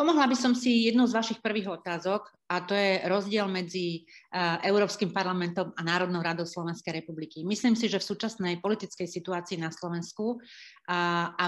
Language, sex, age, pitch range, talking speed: Slovak, female, 30-49, 175-205 Hz, 160 wpm